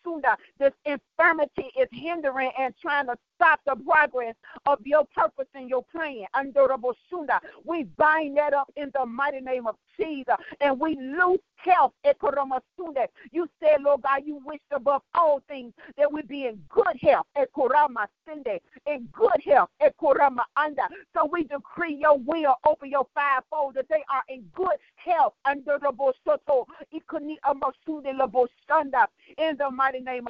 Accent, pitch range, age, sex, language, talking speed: American, 265-315 Hz, 50-69, female, English, 135 wpm